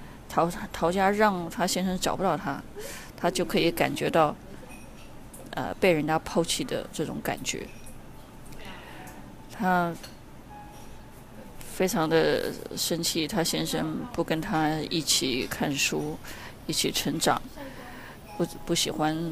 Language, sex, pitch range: Chinese, female, 165-190 Hz